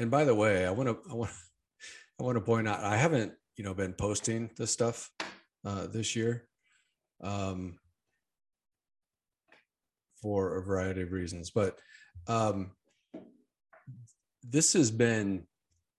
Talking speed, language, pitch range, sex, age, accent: 135 wpm, English, 100-130 Hz, male, 40-59, American